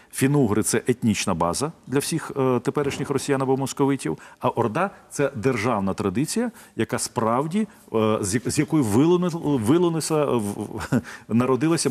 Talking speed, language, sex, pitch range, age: 110 wpm, Ukrainian, male, 110-145 Hz, 40-59